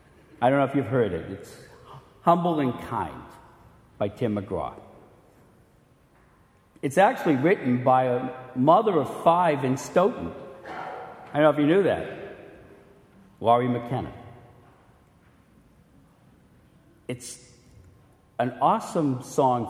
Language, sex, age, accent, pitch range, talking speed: English, male, 60-79, American, 120-150 Hz, 115 wpm